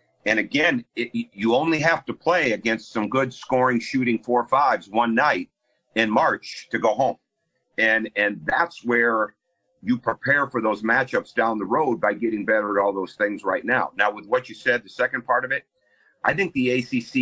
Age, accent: 50-69, American